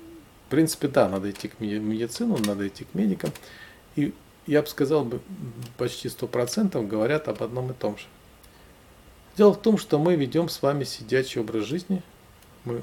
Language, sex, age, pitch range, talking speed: Russian, male, 40-59, 105-130 Hz, 165 wpm